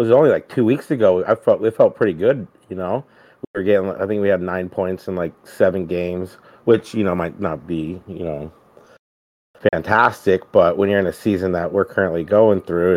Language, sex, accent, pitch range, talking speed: English, male, American, 90-105 Hz, 220 wpm